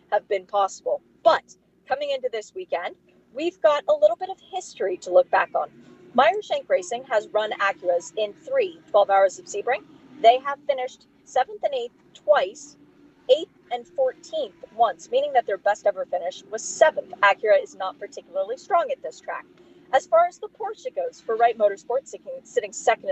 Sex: female